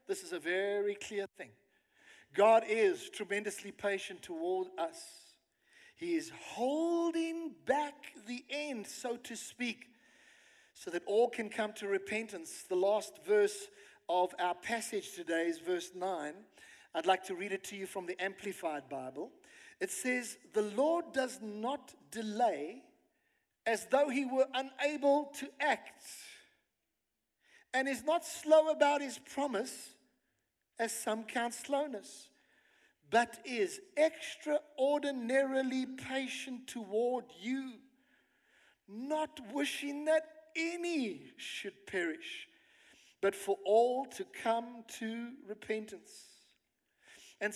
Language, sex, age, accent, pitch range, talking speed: English, male, 50-69, South African, 205-305 Hz, 120 wpm